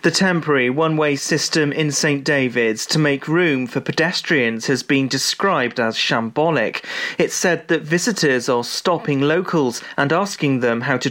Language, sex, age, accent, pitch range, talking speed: English, male, 30-49, British, 130-160 Hz, 160 wpm